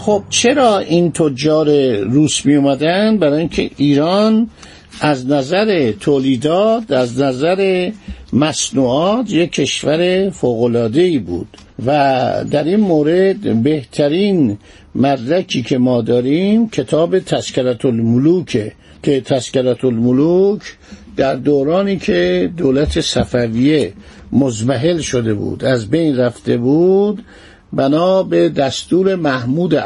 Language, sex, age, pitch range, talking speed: Persian, male, 50-69, 130-175 Hz, 100 wpm